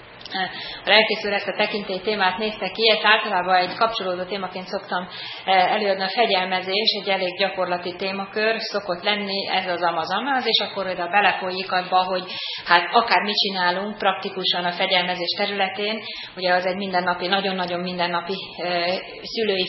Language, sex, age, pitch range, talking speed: Hungarian, female, 30-49, 180-210 Hz, 145 wpm